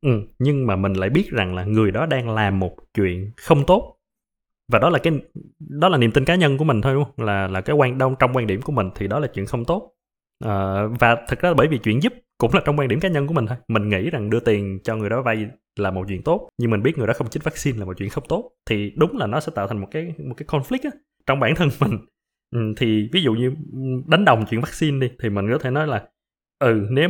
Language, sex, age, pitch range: Vietnamese, male, 20-39, 110-155 Hz